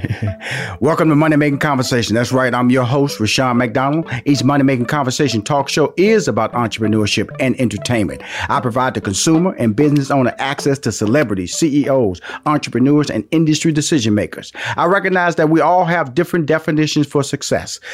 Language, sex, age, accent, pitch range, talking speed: English, male, 40-59, American, 115-155 Hz, 165 wpm